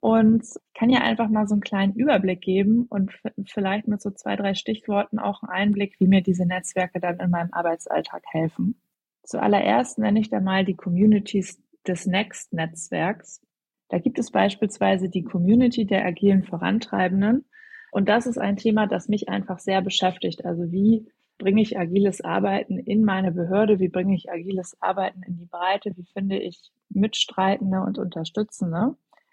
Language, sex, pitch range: German, female, 185-215 Hz